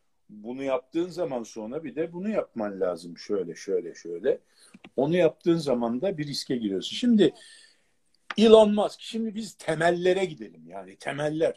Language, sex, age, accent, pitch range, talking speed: Turkish, male, 50-69, native, 135-220 Hz, 145 wpm